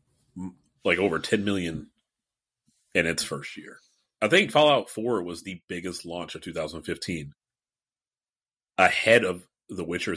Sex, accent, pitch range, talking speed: male, American, 80-115 Hz, 150 wpm